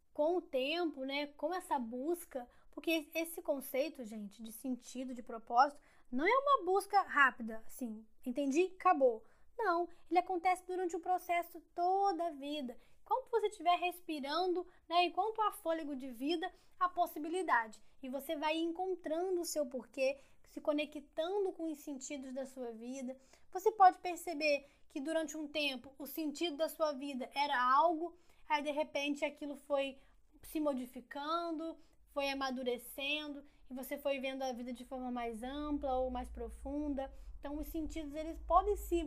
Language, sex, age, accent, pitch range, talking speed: Portuguese, female, 10-29, Brazilian, 255-325 Hz, 155 wpm